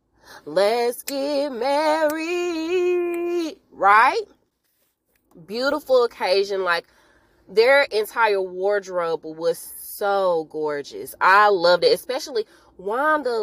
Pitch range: 185-275 Hz